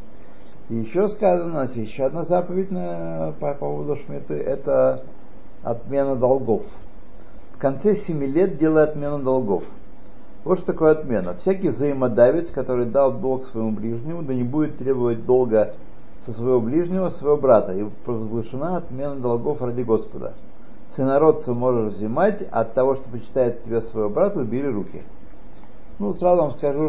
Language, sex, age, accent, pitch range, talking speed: Russian, male, 50-69, native, 115-150 Hz, 145 wpm